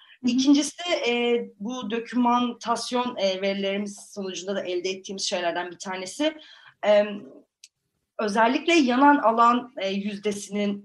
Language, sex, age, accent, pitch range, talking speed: Turkish, female, 30-49, native, 195-275 Hz, 105 wpm